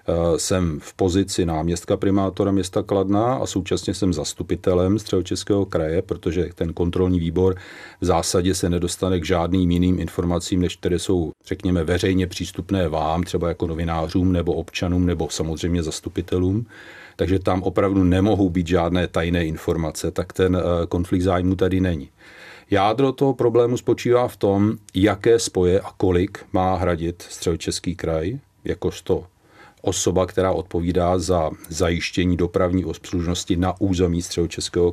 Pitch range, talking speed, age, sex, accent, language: 85-95 Hz, 135 wpm, 40-59, male, native, Czech